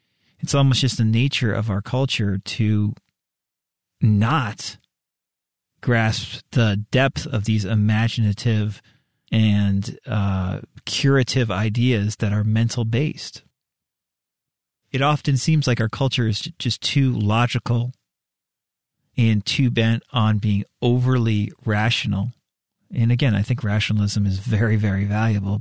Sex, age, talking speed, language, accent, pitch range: male, 40-59, 115 wpm, English, American, 105-125 Hz